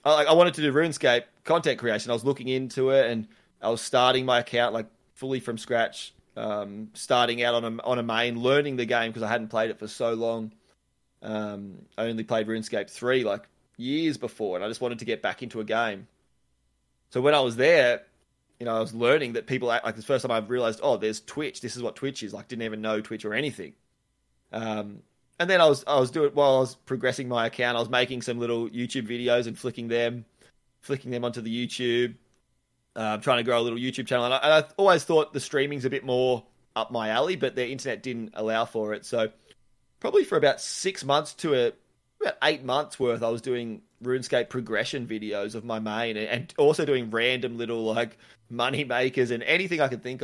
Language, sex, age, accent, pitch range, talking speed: English, male, 20-39, Australian, 115-130 Hz, 220 wpm